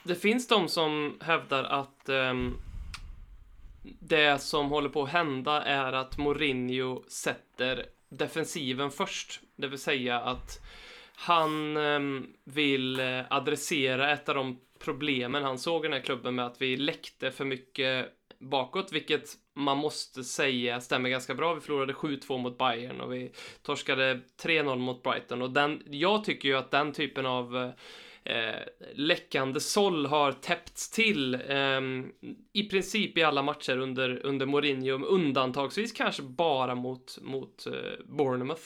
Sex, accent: male, native